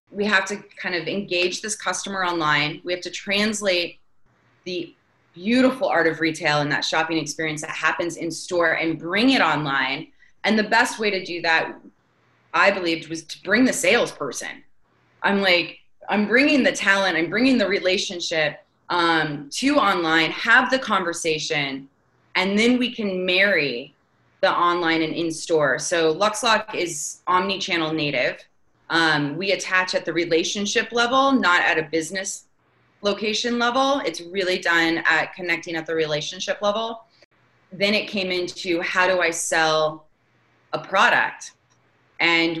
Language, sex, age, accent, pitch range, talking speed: English, female, 20-39, American, 165-215 Hz, 150 wpm